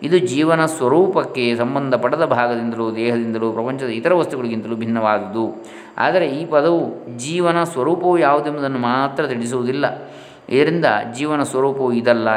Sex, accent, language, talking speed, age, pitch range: male, native, Kannada, 105 wpm, 20-39, 115-155 Hz